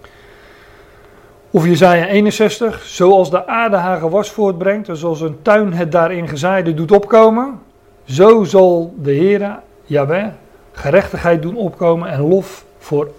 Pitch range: 145-185 Hz